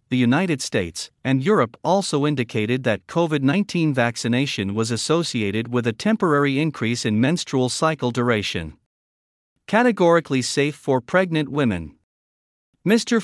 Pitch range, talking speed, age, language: 115-165 Hz, 120 wpm, 50-69, English